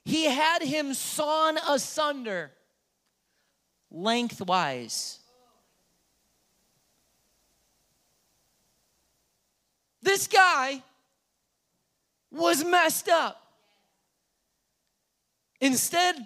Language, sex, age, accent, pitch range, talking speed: English, male, 40-59, American, 180-265 Hz, 45 wpm